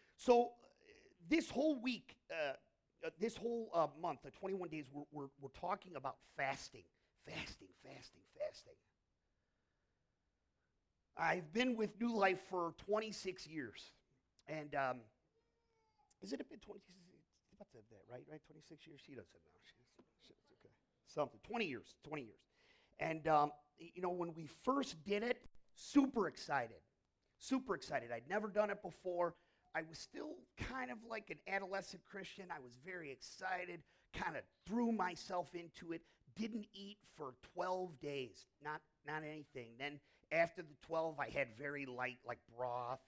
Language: English